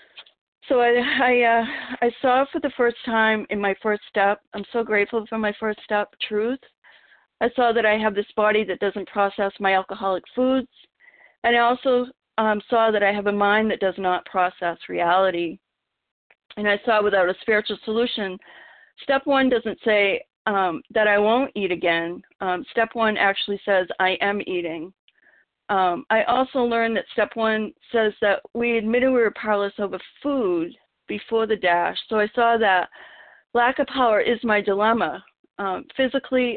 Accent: American